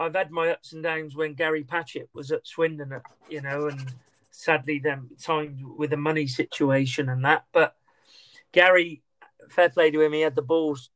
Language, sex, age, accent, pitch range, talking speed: English, male, 40-59, British, 140-155 Hz, 185 wpm